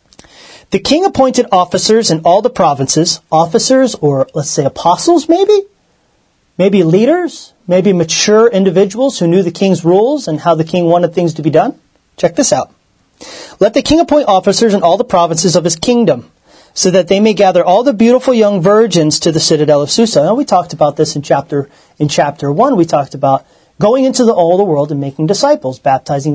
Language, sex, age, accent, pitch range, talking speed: English, male, 30-49, American, 160-225 Hz, 195 wpm